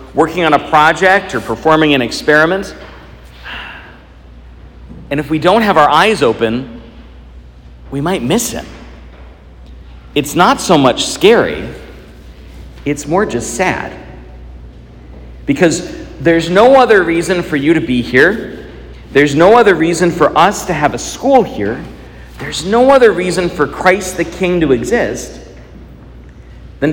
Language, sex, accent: English, male, American